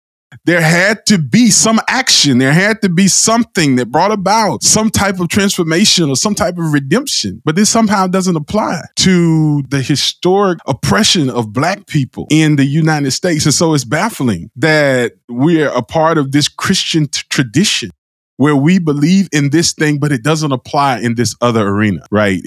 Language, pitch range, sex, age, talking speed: English, 115-160 Hz, male, 20-39, 175 wpm